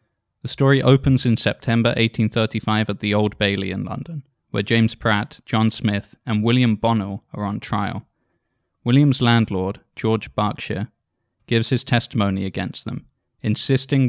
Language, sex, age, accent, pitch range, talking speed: English, male, 20-39, British, 105-120 Hz, 140 wpm